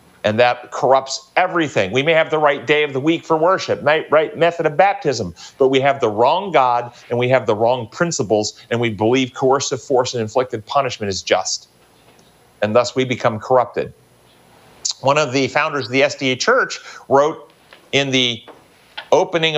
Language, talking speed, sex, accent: English, 180 wpm, male, American